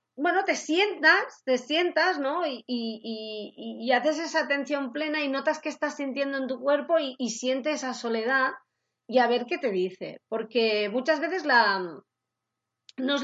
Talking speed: 175 wpm